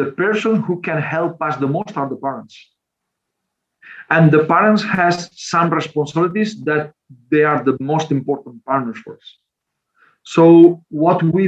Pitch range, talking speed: 140-170 Hz, 150 wpm